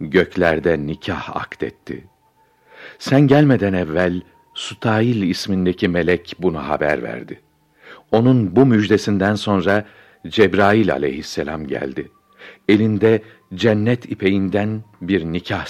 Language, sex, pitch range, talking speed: Turkish, male, 90-115 Hz, 90 wpm